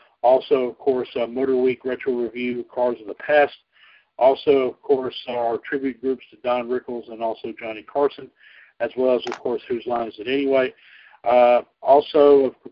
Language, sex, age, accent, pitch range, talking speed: English, male, 50-69, American, 125-155 Hz, 175 wpm